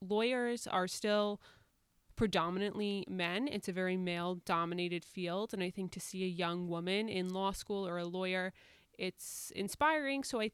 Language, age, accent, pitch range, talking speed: English, 20-39, American, 180-215 Hz, 165 wpm